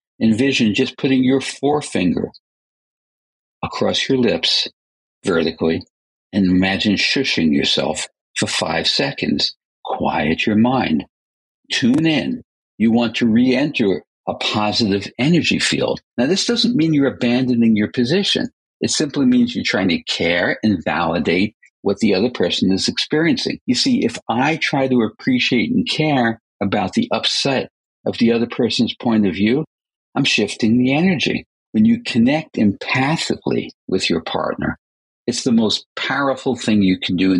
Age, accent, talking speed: 60-79, American, 145 wpm